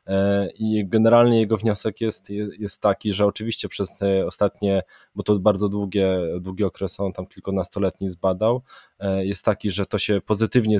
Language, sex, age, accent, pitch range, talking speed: Polish, male, 20-39, native, 95-105 Hz, 160 wpm